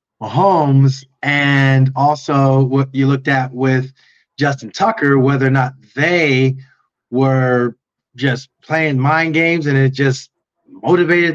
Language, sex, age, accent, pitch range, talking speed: English, male, 40-59, American, 135-165 Hz, 120 wpm